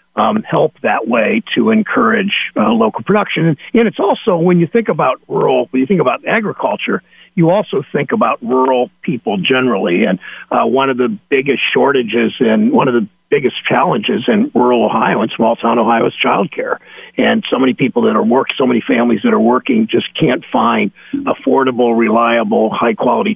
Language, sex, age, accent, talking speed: English, male, 50-69, American, 175 wpm